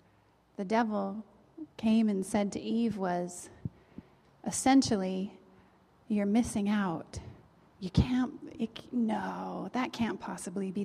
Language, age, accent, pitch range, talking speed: English, 30-49, American, 200-235 Hz, 105 wpm